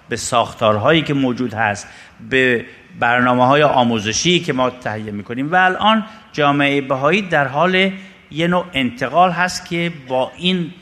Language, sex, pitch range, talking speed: Persian, male, 120-175 Hz, 145 wpm